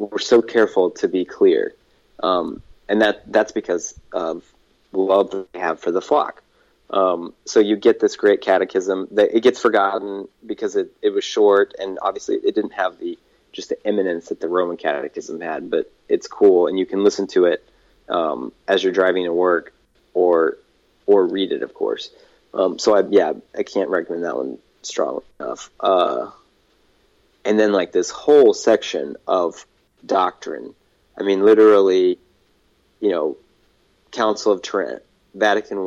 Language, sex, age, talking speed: English, male, 30-49, 165 wpm